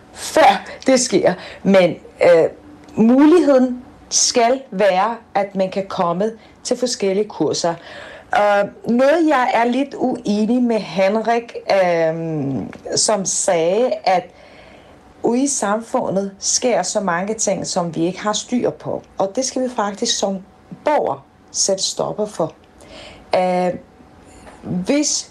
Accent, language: native, Danish